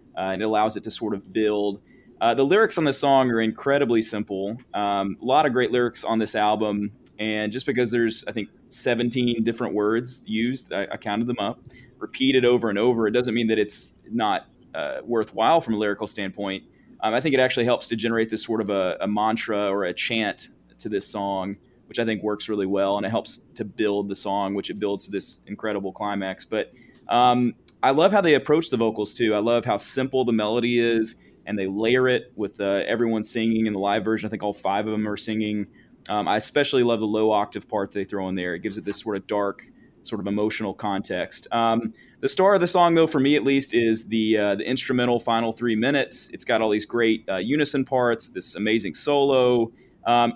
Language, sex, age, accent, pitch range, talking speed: English, male, 30-49, American, 105-125 Hz, 225 wpm